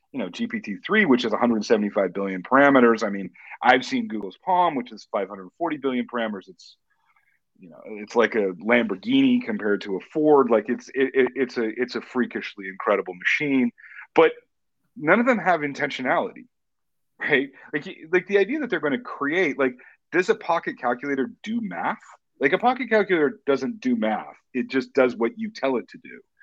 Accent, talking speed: American, 195 wpm